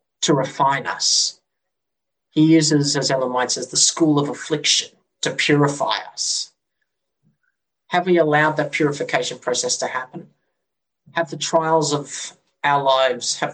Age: 30-49